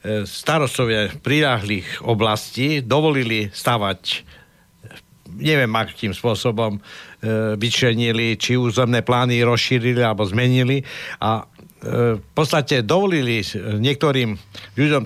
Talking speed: 90 wpm